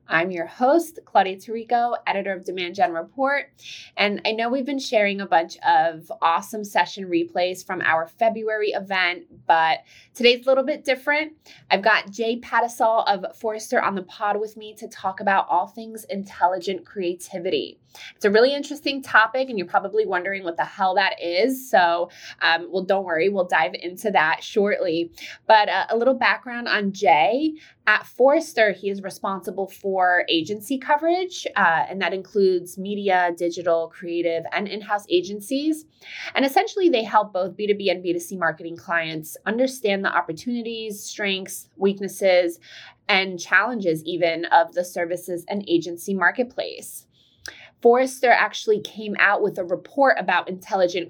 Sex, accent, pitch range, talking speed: female, American, 180-230 Hz, 155 wpm